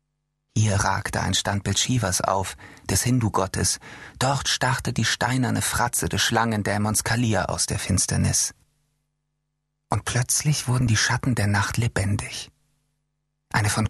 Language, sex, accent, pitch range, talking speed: German, male, German, 105-145 Hz, 125 wpm